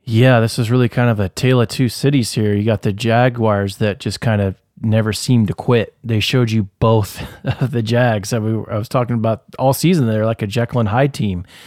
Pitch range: 110-130 Hz